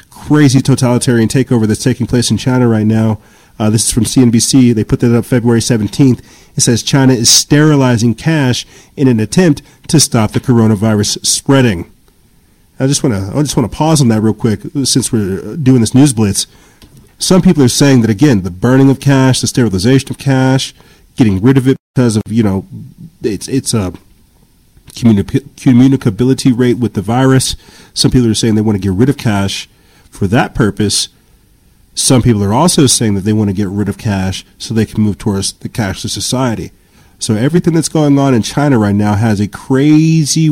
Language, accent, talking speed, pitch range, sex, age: English, American, 195 wpm, 110-135 Hz, male, 40-59